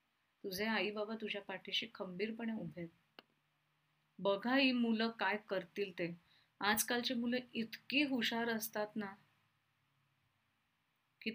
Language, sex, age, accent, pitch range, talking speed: Marathi, female, 30-49, native, 200-235 Hz, 105 wpm